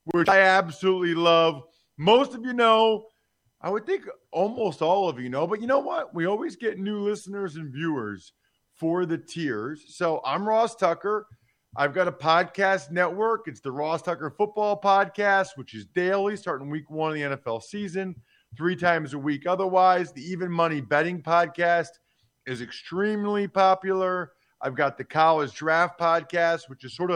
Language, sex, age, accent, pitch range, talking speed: English, male, 40-59, American, 145-190 Hz, 170 wpm